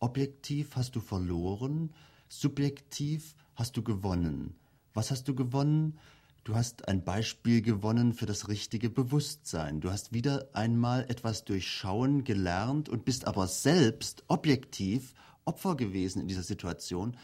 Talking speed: 130 wpm